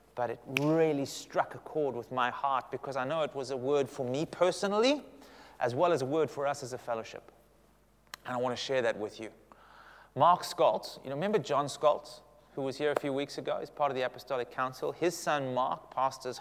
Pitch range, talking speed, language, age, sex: 125-155 Hz, 225 wpm, English, 30-49, male